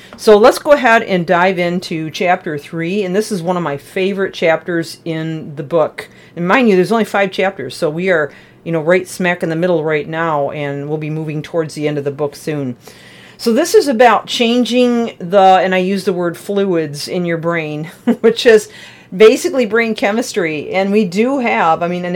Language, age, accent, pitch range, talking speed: English, 40-59, American, 165-205 Hz, 210 wpm